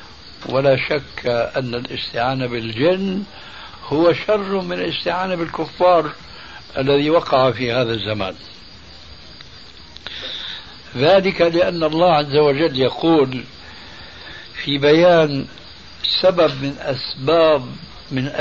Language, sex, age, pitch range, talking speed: Arabic, male, 60-79, 125-165 Hz, 90 wpm